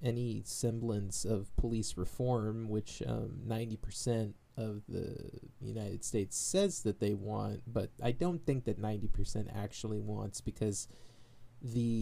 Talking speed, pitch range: 130 wpm, 110-125 Hz